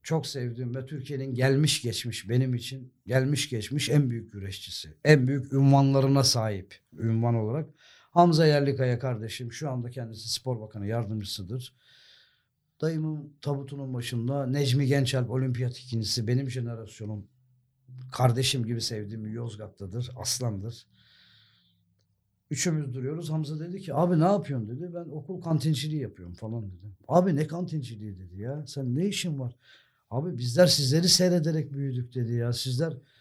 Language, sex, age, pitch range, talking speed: Turkish, male, 60-79, 120-160 Hz, 135 wpm